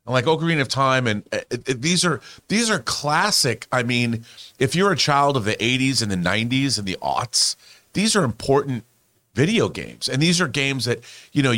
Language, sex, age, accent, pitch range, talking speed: English, male, 40-59, American, 110-140 Hz, 205 wpm